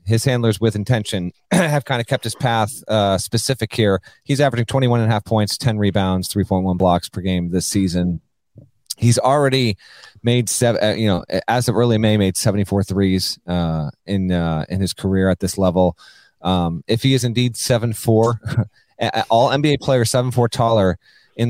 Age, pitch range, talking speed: 30-49, 100-130 Hz, 180 wpm